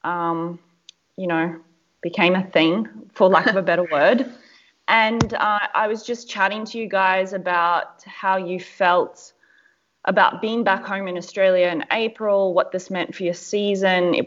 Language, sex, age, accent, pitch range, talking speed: English, female, 20-39, Australian, 170-205 Hz, 170 wpm